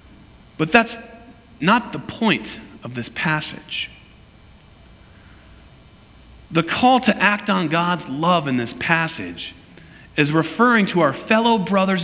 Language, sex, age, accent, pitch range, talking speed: English, male, 40-59, American, 145-210 Hz, 120 wpm